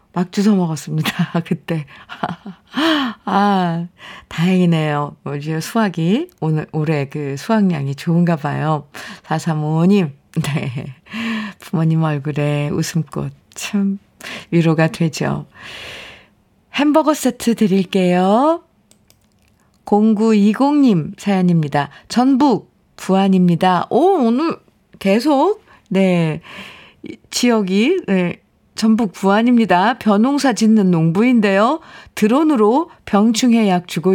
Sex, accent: female, native